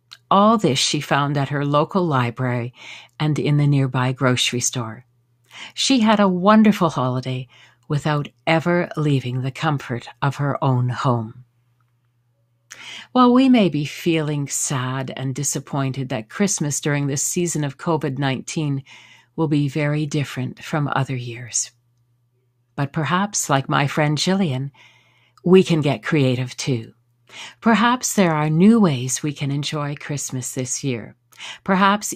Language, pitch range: English, 125-160 Hz